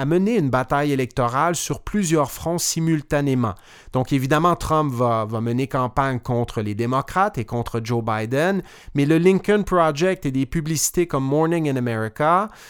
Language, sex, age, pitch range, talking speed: French, male, 30-49, 130-170 Hz, 155 wpm